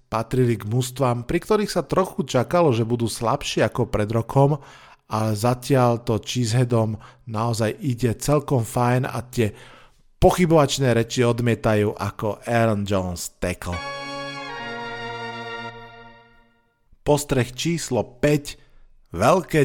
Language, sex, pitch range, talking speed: Slovak, male, 115-140 Hz, 100 wpm